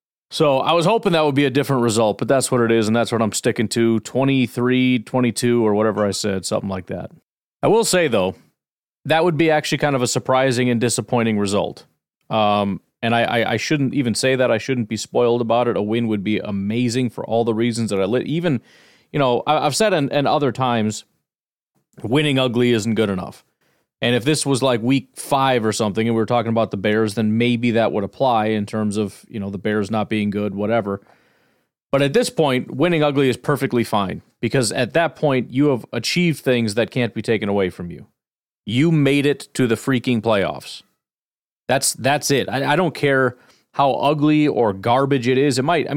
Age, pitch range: 30-49, 110-140 Hz